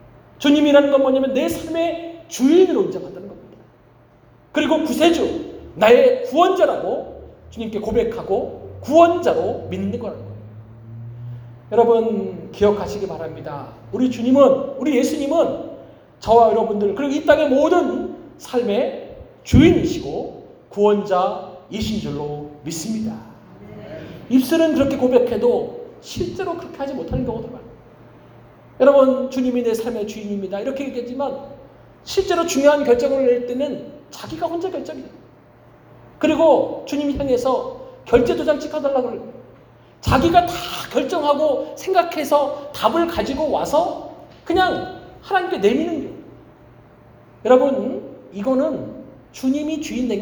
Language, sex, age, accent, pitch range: Korean, male, 40-59, native, 230-315 Hz